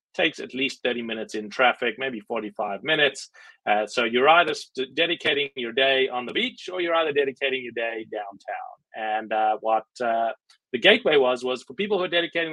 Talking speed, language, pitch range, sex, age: 190 wpm, English, 120-170 Hz, male, 30-49